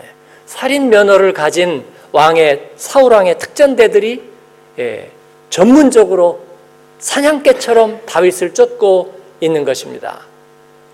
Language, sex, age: Korean, male, 50-69